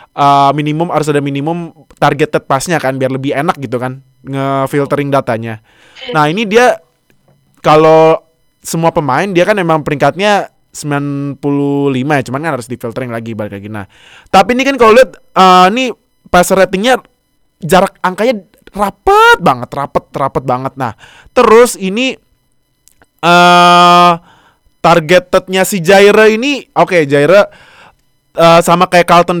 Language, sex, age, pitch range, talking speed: Indonesian, male, 20-39, 135-175 Hz, 135 wpm